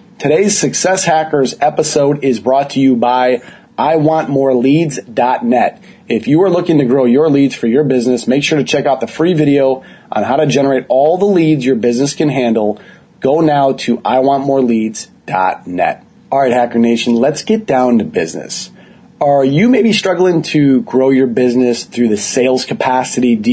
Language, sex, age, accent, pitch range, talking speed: English, male, 30-49, American, 125-155 Hz, 170 wpm